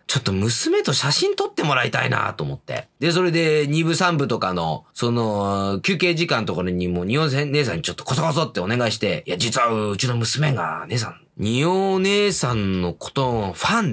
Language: Japanese